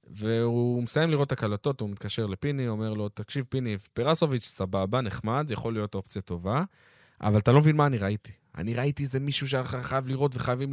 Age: 20-39